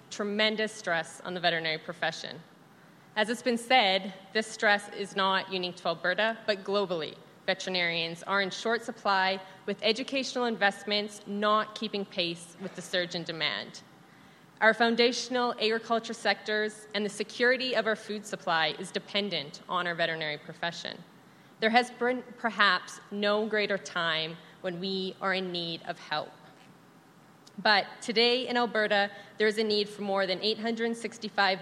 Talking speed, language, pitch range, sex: 150 wpm, English, 185-220 Hz, female